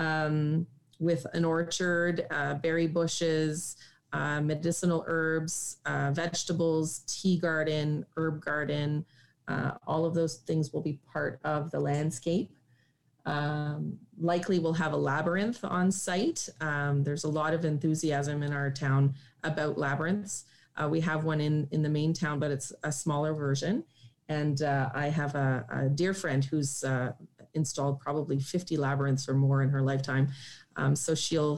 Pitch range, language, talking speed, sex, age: 140-165 Hz, English, 155 wpm, female, 30-49